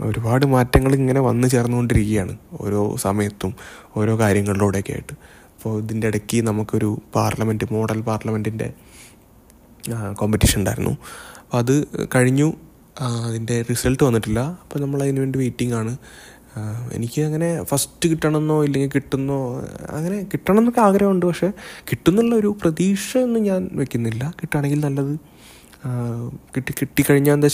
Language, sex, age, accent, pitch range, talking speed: Malayalam, male, 20-39, native, 110-150 Hz, 105 wpm